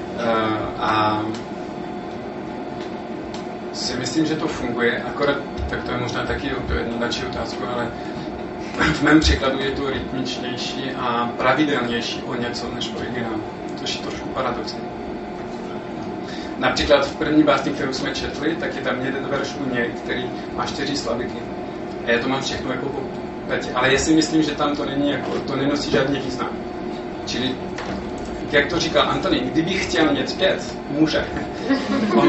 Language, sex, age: Czech, male, 30-49